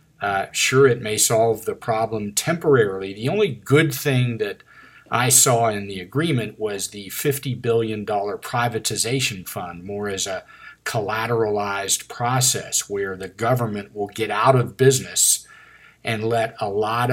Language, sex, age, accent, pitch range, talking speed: English, male, 50-69, American, 110-135 Hz, 145 wpm